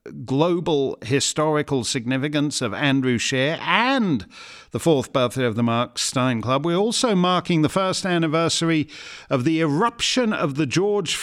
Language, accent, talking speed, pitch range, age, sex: English, British, 145 wpm, 130-175 Hz, 50-69, male